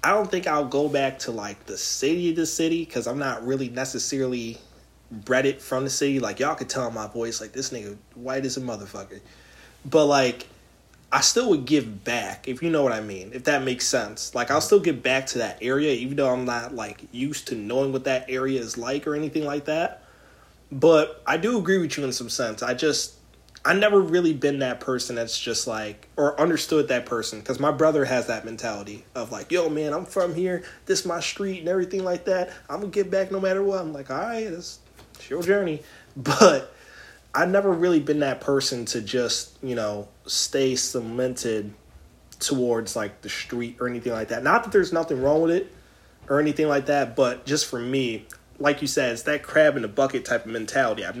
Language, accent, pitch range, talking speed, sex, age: English, American, 120-155 Hz, 220 wpm, male, 30-49